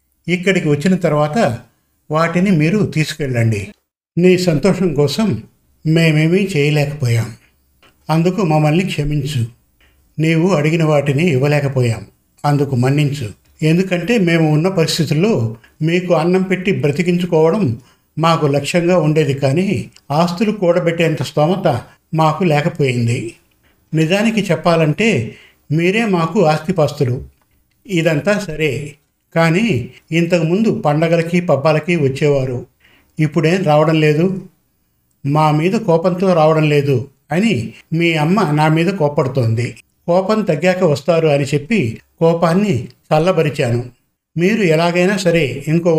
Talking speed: 100 wpm